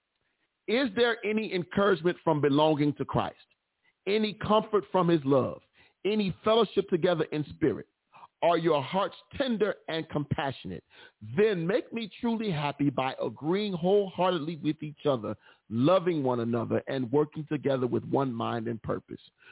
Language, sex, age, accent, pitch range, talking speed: English, male, 40-59, American, 120-165 Hz, 140 wpm